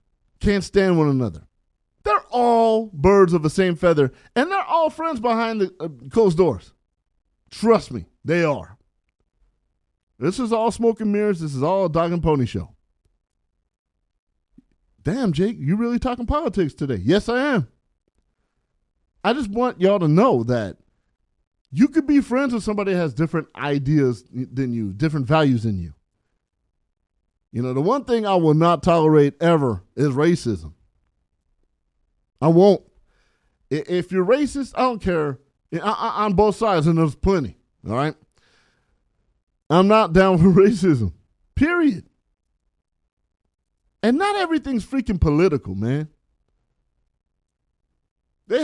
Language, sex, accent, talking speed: English, male, American, 140 wpm